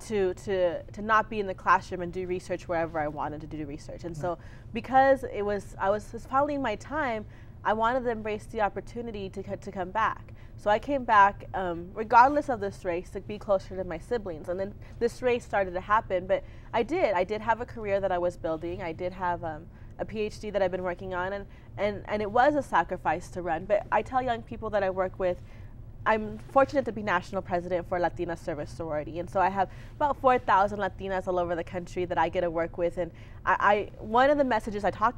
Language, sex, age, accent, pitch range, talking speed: English, female, 30-49, American, 175-225 Hz, 235 wpm